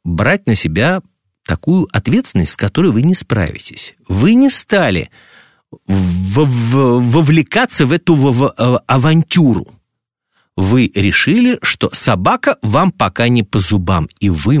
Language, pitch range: Russian, 100-150 Hz